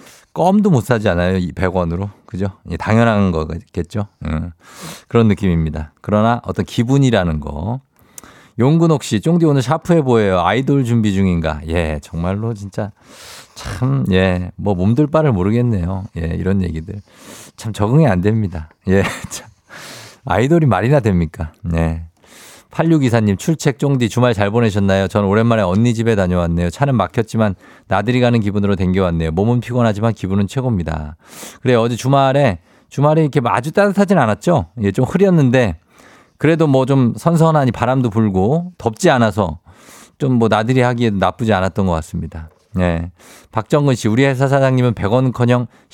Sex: male